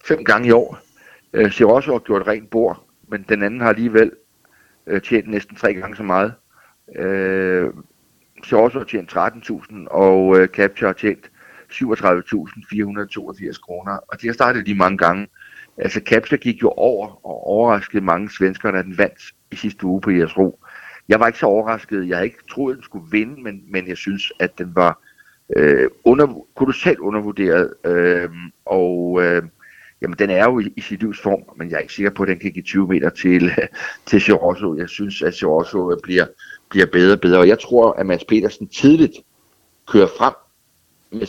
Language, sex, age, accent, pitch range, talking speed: Danish, male, 60-79, native, 95-125 Hz, 185 wpm